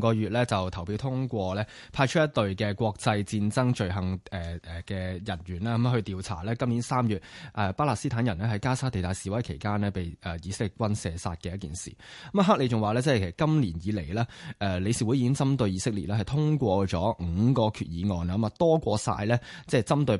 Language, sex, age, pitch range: Chinese, male, 20-39, 95-125 Hz